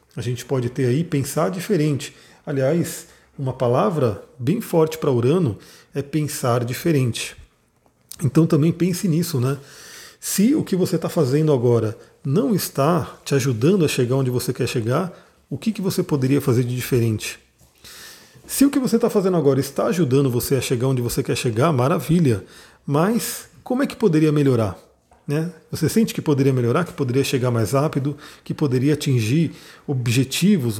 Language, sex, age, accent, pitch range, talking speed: Portuguese, male, 40-59, Brazilian, 130-170 Hz, 165 wpm